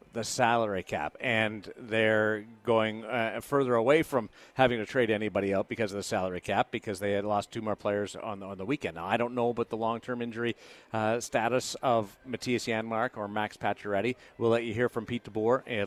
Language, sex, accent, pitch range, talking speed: English, male, American, 100-120 Hz, 210 wpm